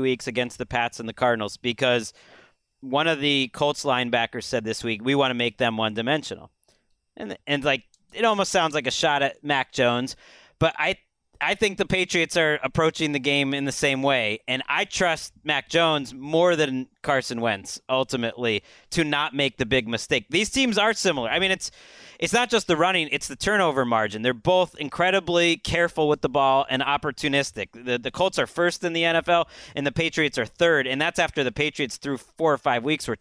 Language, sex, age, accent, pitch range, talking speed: English, male, 30-49, American, 130-175 Hz, 205 wpm